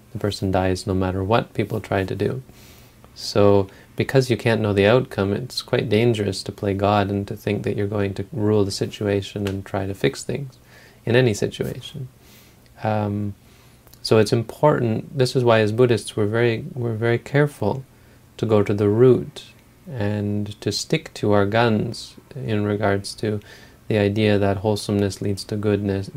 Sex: male